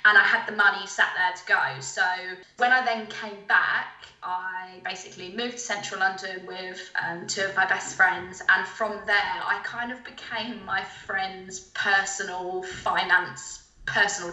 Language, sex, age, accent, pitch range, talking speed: English, female, 10-29, British, 185-225 Hz, 170 wpm